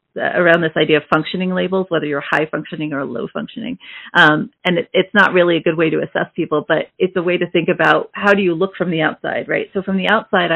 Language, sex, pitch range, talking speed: English, female, 155-175 Hz, 250 wpm